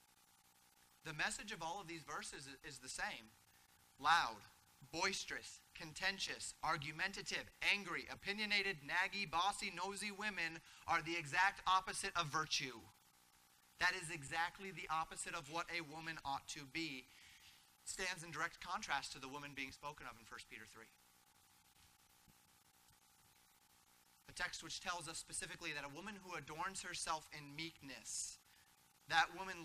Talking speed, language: 140 wpm, English